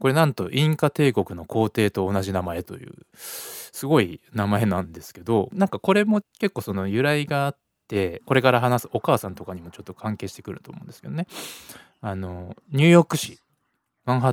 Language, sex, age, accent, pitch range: Japanese, male, 20-39, native, 100-155 Hz